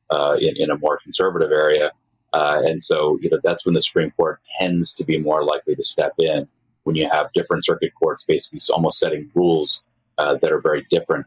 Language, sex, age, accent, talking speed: English, male, 30-49, American, 215 wpm